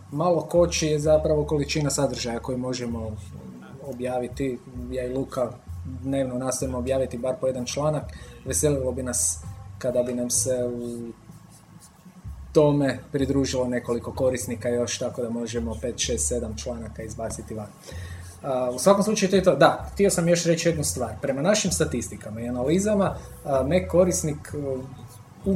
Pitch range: 120-150 Hz